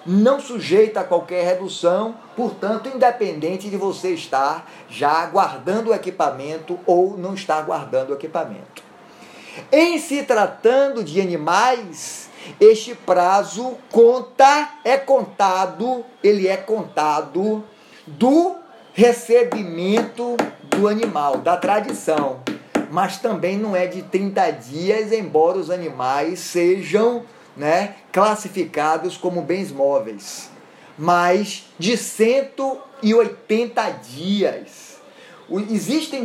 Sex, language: male, Portuguese